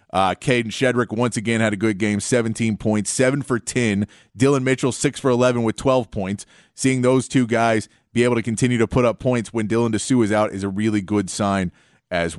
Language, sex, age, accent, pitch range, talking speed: English, male, 30-49, American, 110-125 Hz, 220 wpm